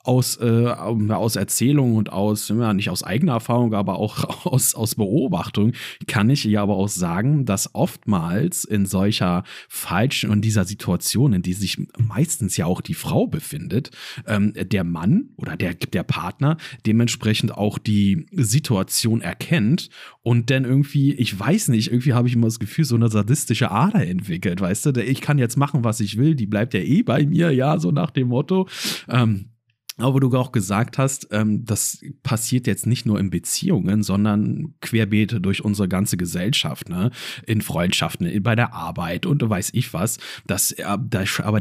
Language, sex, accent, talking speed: German, male, German, 175 wpm